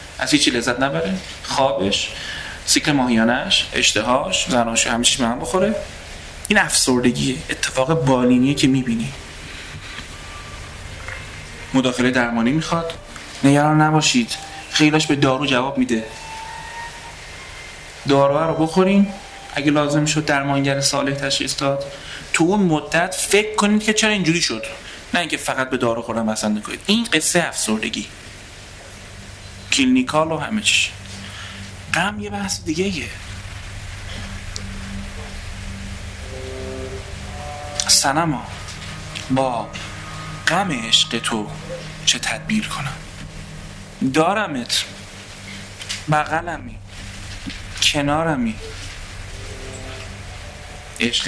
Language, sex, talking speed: Persian, male, 90 wpm